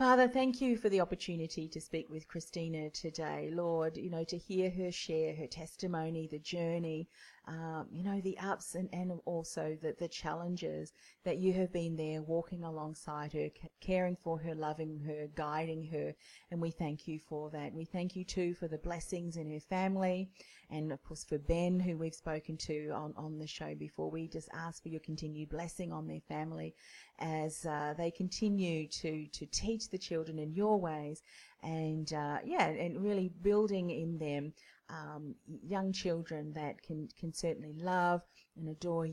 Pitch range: 155-180 Hz